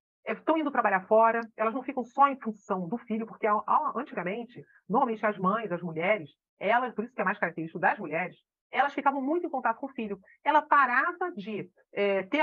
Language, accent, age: Portuguese, Brazilian, 40-59